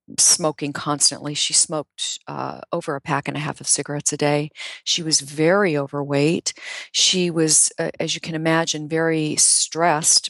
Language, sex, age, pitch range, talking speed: English, female, 40-59, 150-180 Hz, 165 wpm